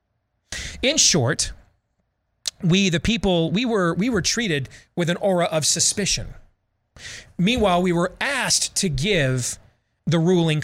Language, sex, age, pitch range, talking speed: English, male, 30-49, 110-175 Hz, 130 wpm